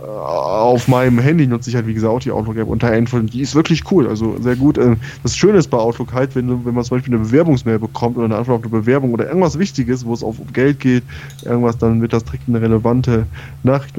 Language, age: German, 20-39